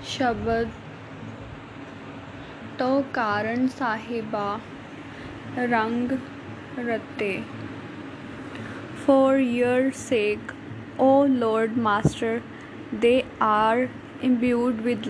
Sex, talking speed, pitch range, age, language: female, 65 wpm, 215-260 Hz, 10-29, Punjabi